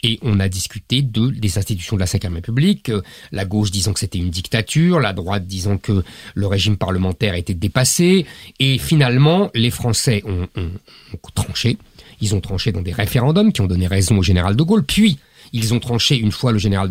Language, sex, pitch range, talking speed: French, male, 100-140 Hz, 200 wpm